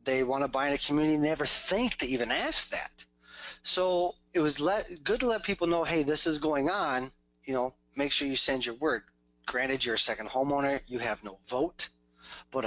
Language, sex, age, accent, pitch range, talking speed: English, male, 30-49, American, 110-135 Hz, 220 wpm